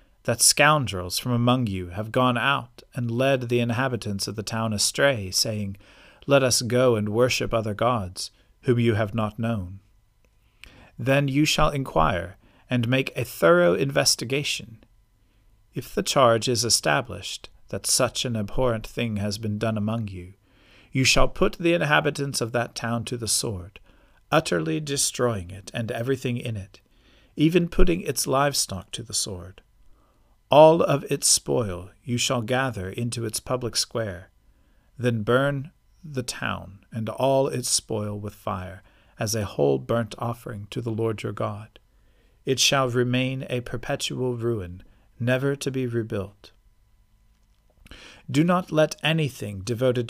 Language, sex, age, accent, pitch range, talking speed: English, male, 40-59, American, 105-130 Hz, 150 wpm